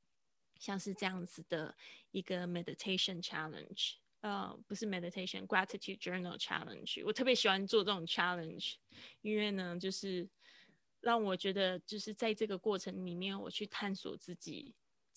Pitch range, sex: 180-200 Hz, female